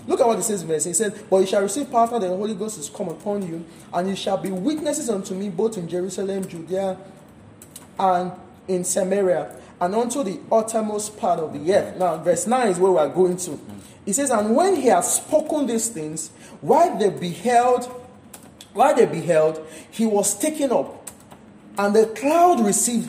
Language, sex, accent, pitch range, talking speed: English, male, Nigerian, 185-260 Hz, 195 wpm